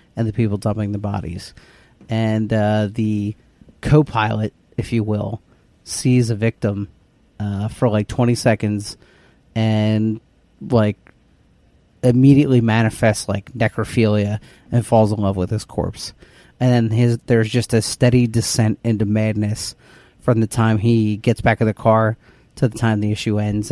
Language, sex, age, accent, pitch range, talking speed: English, male, 30-49, American, 105-120 Hz, 150 wpm